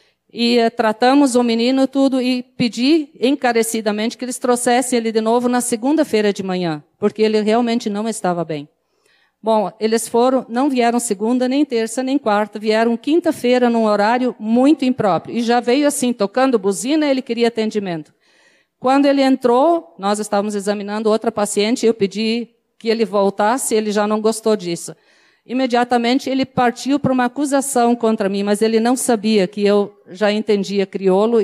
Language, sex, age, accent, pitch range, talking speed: Portuguese, female, 50-69, Brazilian, 210-250 Hz, 160 wpm